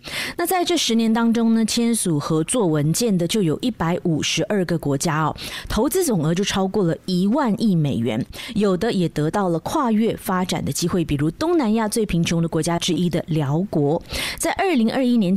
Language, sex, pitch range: Chinese, female, 170-245 Hz